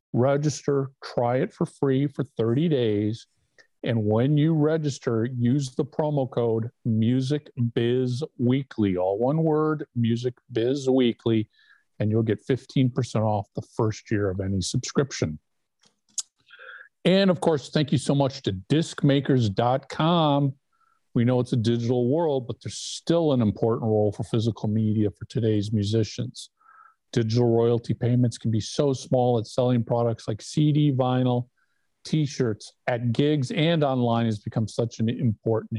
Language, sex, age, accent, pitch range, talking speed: English, male, 50-69, American, 115-140 Hz, 135 wpm